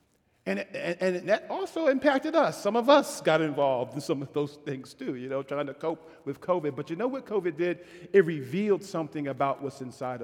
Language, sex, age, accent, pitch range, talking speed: English, male, 50-69, American, 135-200 Hz, 215 wpm